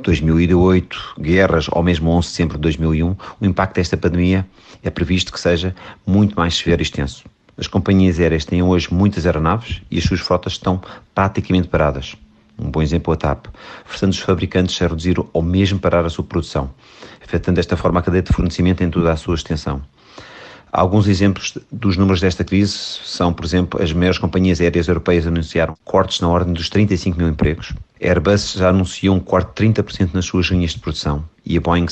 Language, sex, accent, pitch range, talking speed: Portuguese, male, Portuguese, 85-100 Hz, 195 wpm